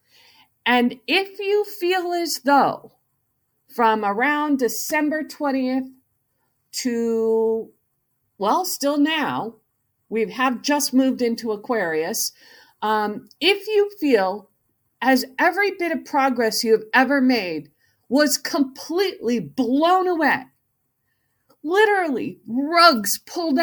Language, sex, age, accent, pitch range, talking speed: English, female, 50-69, American, 200-295 Hz, 100 wpm